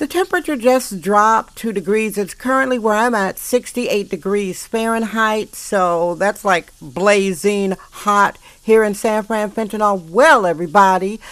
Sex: female